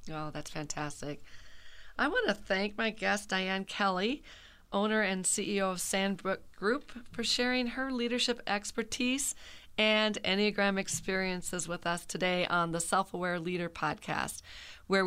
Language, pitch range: English, 180-220 Hz